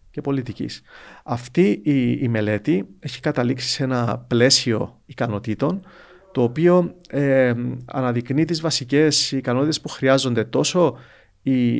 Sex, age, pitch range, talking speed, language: male, 40-59, 120-140 Hz, 115 wpm, Greek